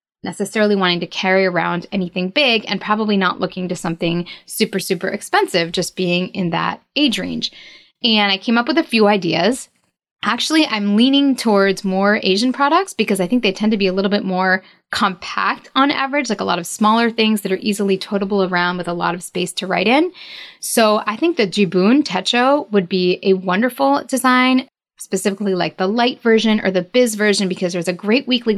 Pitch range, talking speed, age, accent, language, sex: 185-230 Hz, 200 wpm, 10-29, American, English, female